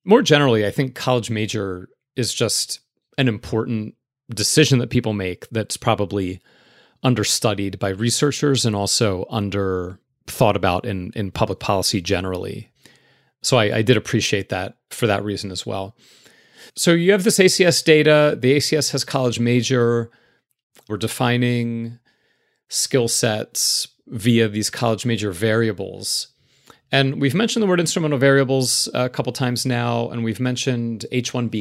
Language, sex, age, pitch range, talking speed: English, male, 30-49, 105-130 Hz, 140 wpm